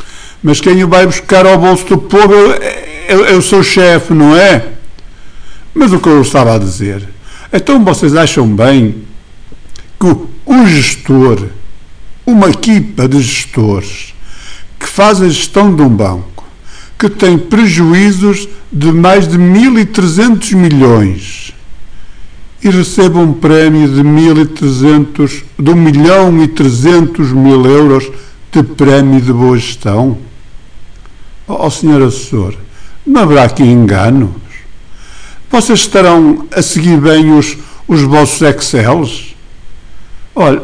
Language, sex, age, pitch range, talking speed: Portuguese, male, 50-69, 120-175 Hz, 120 wpm